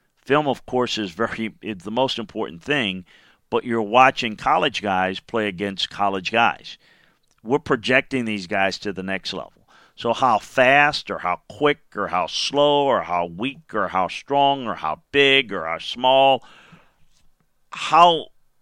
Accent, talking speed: American, 155 wpm